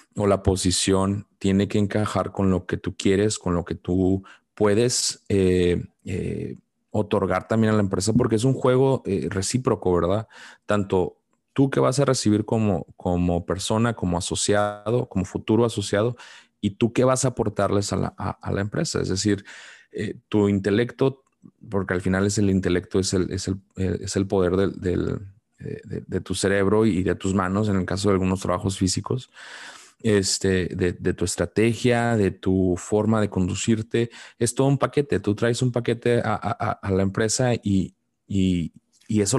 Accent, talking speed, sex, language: Mexican, 180 wpm, male, Spanish